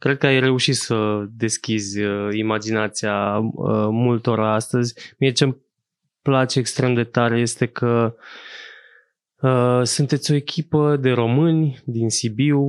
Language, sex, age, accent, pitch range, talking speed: Romanian, male, 20-39, native, 110-130 Hz, 115 wpm